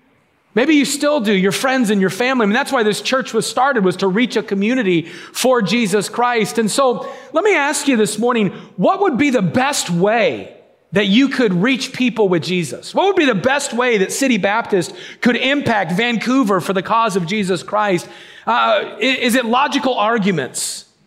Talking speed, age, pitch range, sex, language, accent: 195 wpm, 40-59, 200-260 Hz, male, English, American